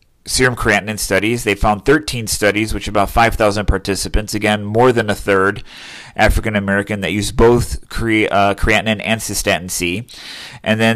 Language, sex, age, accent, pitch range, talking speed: English, male, 30-49, American, 100-110 Hz, 150 wpm